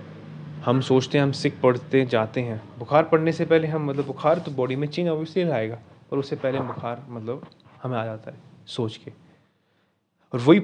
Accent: native